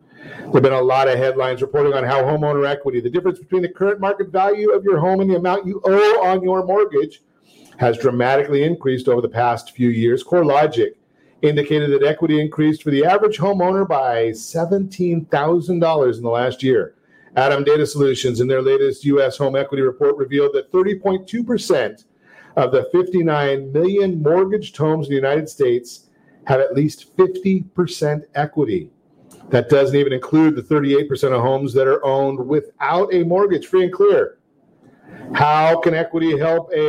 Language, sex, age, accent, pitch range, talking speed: English, male, 50-69, American, 140-195 Hz, 170 wpm